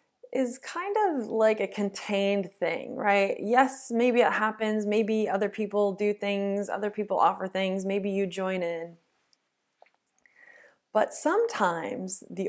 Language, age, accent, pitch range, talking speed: English, 20-39, American, 190-235 Hz, 135 wpm